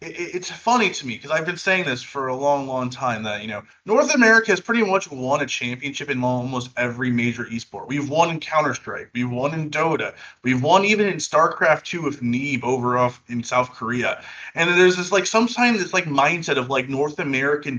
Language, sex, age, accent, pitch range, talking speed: English, male, 20-39, American, 130-210 Hz, 215 wpm